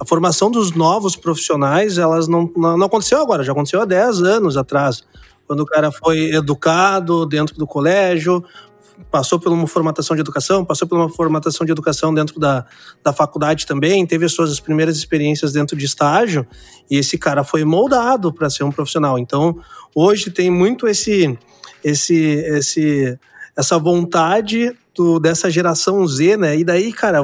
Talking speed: 155 wpm